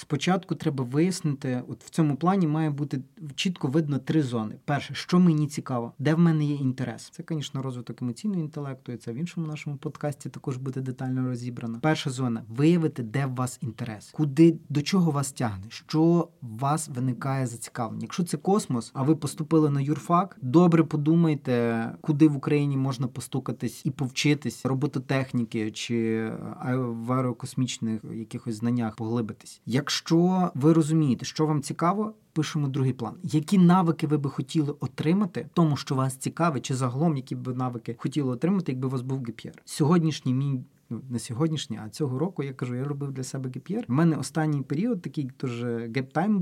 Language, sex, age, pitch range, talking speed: Ukrainian, male, 30-49, 125-155 Hz, 170 wpm